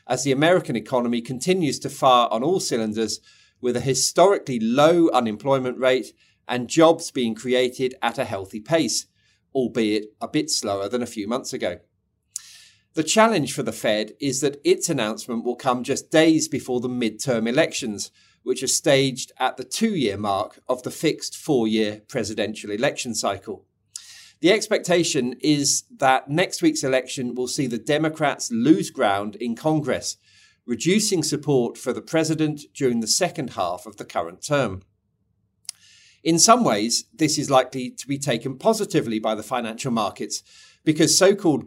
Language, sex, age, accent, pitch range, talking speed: English, male, 40-59, British, 115-155 Hz, 160 wpm